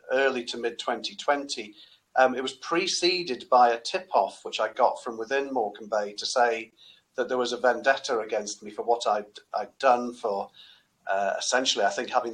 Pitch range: 120-140 Hz